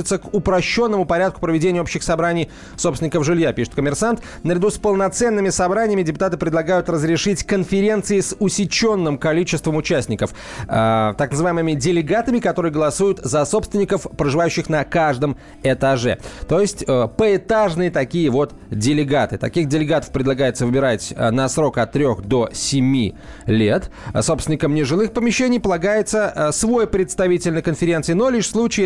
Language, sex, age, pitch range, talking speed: Russian, male, 30-49, 120-180 Hz, 130 wpm